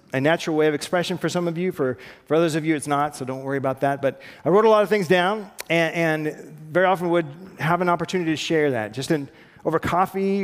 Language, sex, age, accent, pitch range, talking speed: English, male, 40-59, American, 140-175 Hz, 255 wpm